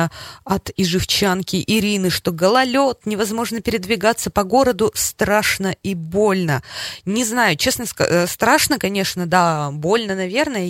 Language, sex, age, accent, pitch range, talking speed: Russian, female, 20-39, native, 160-205 Hz, 120 wpm